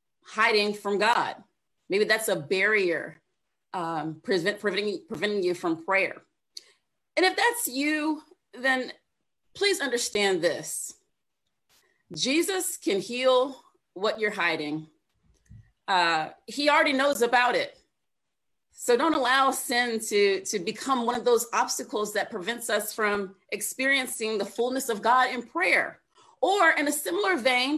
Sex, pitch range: female, 205-285 Hz